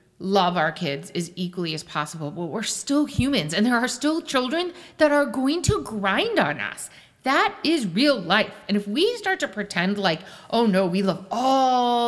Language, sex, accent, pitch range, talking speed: English, female, American, 165-245 Hz, 195 wpm